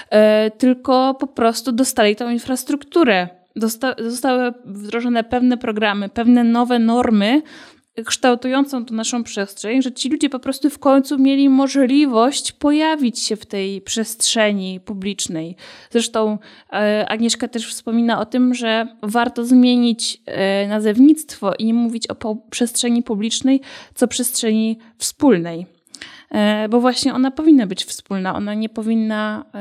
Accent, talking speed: native, 120 wpm